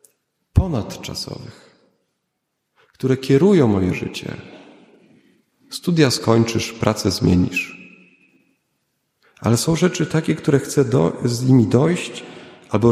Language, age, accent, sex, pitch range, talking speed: Polish, 40-59, native, male, 110-135 Hz, 90 wpm